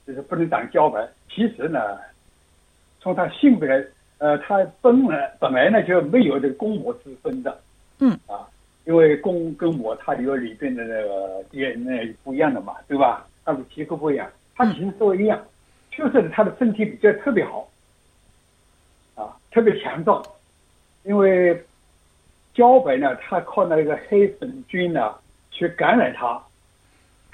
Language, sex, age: Chinese, male, 60-79